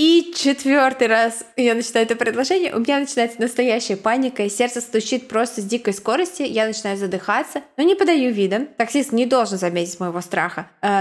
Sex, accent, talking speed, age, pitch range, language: female, native, 180 wpm, 20-39, 190-245 Hz, Russian